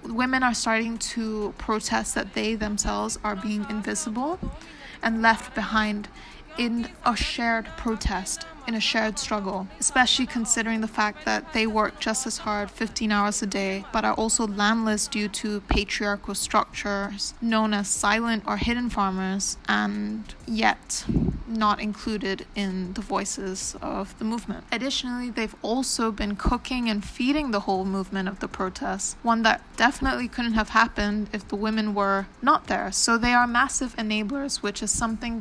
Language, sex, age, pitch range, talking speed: English, female, 20-39, 205-240 Hz, 160 wpm